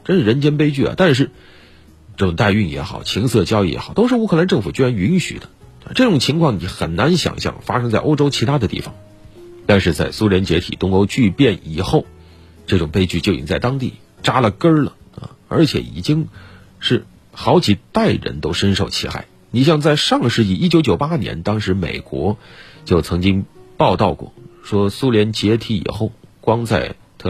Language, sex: Chinese, male